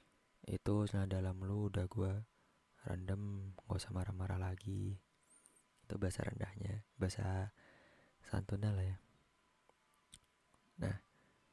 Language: Indonesian